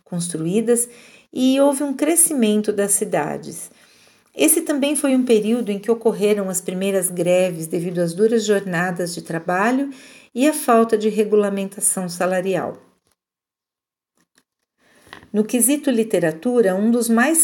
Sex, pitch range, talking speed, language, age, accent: female, 185-245 Hz, 125 wpm, English, 50-69, Brazilian